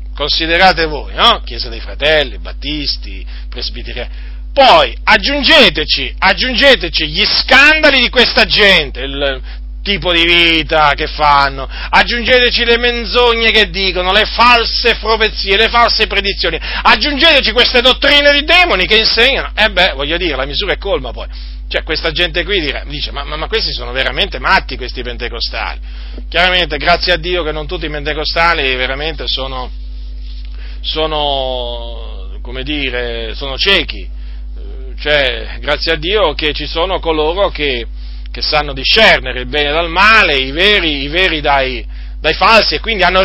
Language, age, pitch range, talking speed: Italian, 40-59, 140-210 Hz, 145 wpm